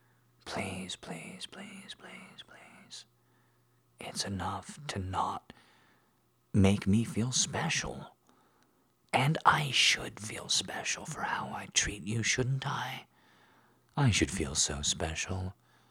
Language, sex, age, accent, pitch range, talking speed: English, male, 40-59, American, 75-100 Hz, 115 wpm